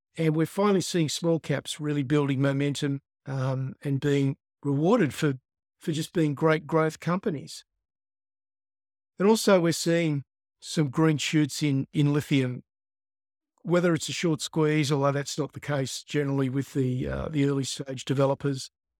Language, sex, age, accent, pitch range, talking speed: English, male, 50-69, Australian, 135-155 Hz, 150 wpm